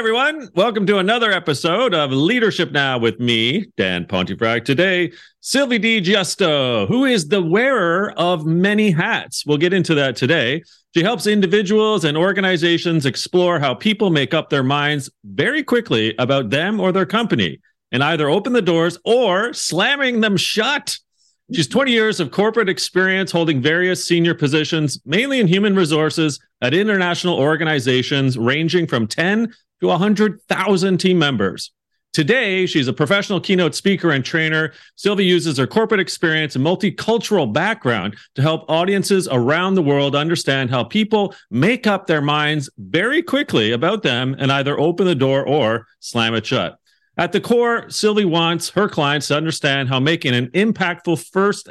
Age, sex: 40-59, male